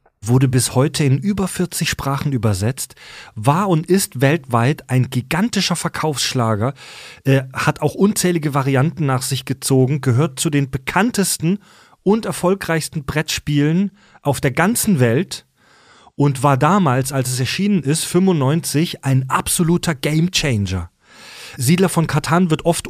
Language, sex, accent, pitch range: German, male, German, 130-165 Hz